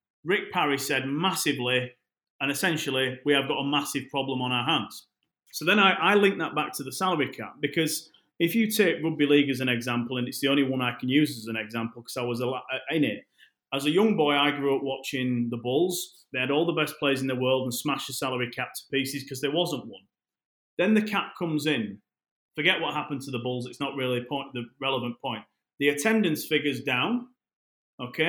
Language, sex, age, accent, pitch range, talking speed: English, male, 30-49, British, 130-155 Hz, 220 wpm